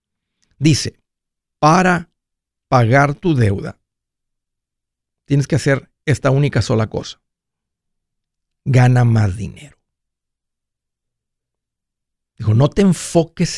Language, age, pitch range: Spanish, 50-69, 115-160 Hz